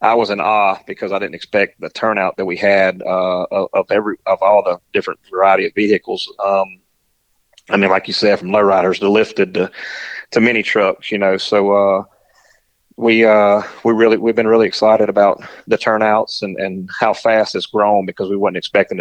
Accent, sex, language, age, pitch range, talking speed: American, male, English, 30-49, 95-110 Hz, 200 wpm